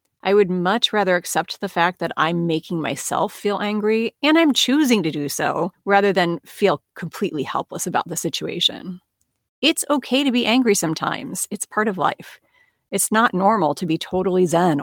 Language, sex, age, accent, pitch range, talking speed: English, female, 40-59, American, 170-215 Hz, 180 wpm